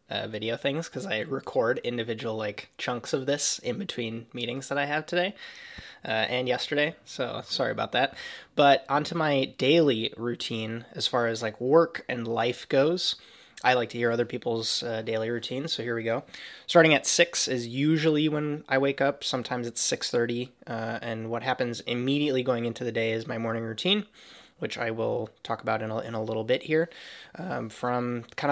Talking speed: 195 wpm